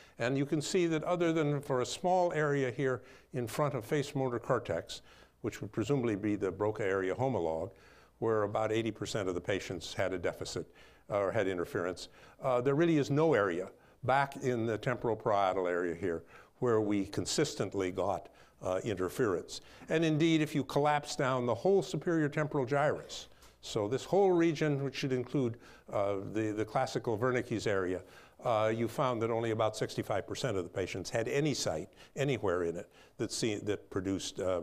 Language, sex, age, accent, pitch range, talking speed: English, male, 60-79, American, 110-150 Hz, 175 wpm